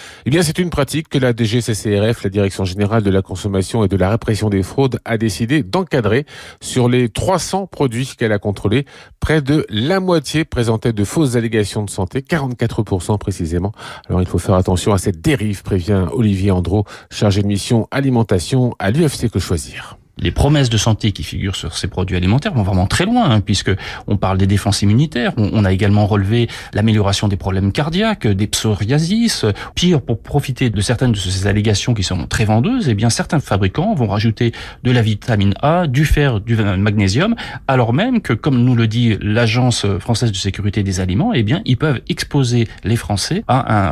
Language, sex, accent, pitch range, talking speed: French, male, French, 100-130 Hz, 190 wpm